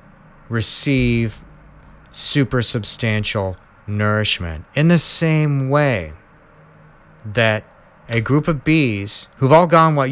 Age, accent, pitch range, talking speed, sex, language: 40-59, American, 100-130 Hz, 100 wpm, male, English